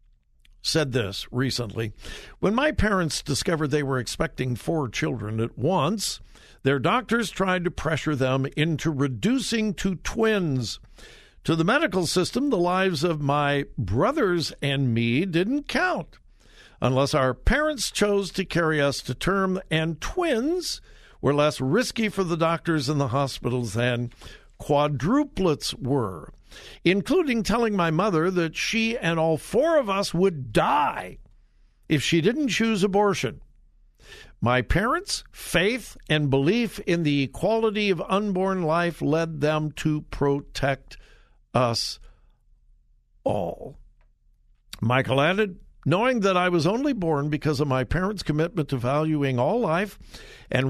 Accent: American